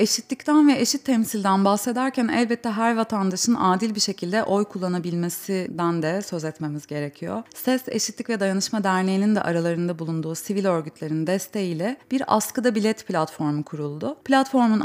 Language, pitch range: Turkish, 175-230 Hz